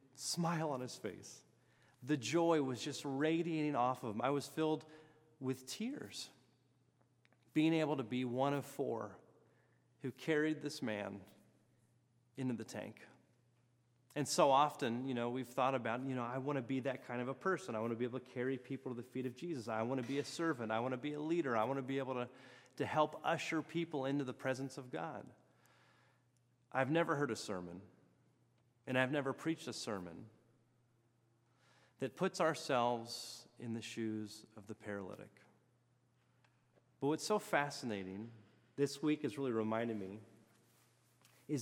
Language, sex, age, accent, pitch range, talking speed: English, male, 30-49, American, 120-135 Hz, 175 wpm